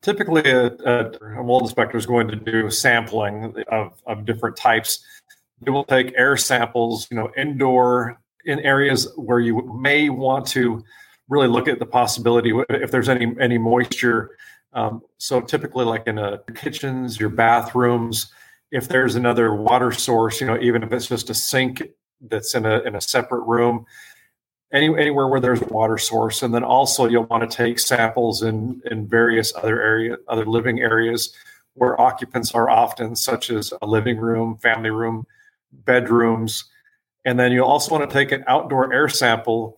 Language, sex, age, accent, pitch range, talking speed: English, male, 40-59, American, 115-130 Hz, 175 wpm